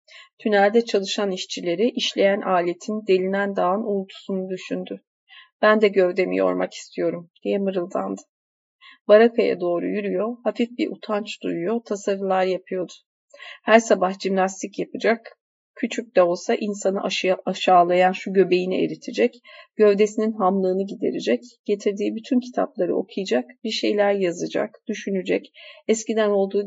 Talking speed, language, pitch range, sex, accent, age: 115 wpm, Turkish, 190-230 Hz, female, native, 40-59